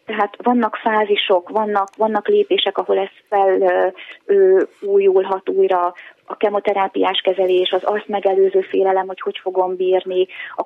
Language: Hungarian